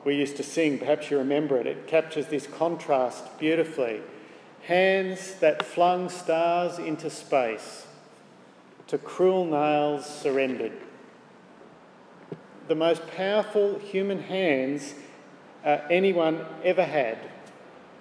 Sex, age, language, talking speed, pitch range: male, 50-69, English, 105 wpm, 155-195 Hz